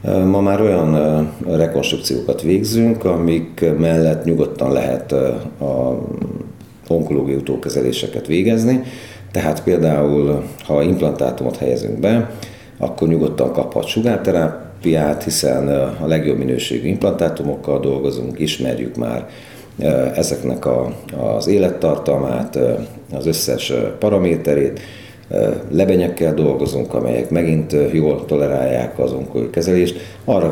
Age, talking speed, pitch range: 50-69, 90 wpm, 75-95 Hz